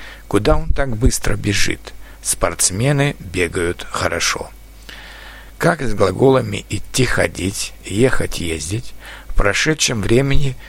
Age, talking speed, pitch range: 60-79, 100 wpm, 90-130 Hz